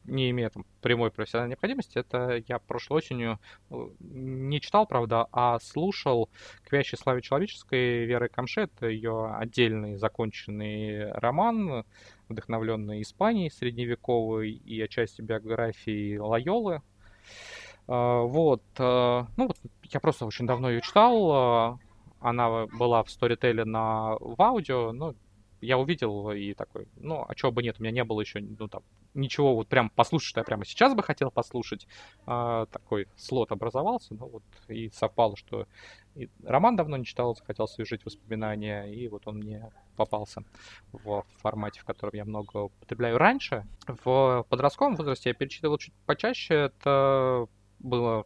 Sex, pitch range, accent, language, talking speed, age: male, 105-130 Hz, native, Russian, 145 wpm, 20-39